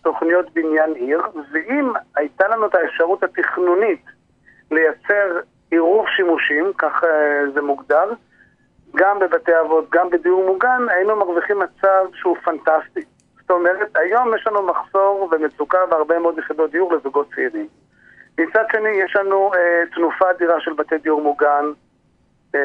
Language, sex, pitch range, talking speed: Hebrew, male, 160-190 Hz, 140 wpm